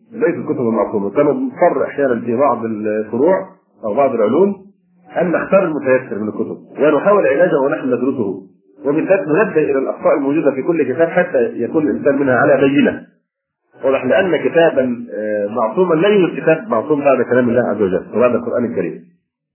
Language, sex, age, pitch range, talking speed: Arabic, male, 40-59, 125-180 Hz, 155 wpm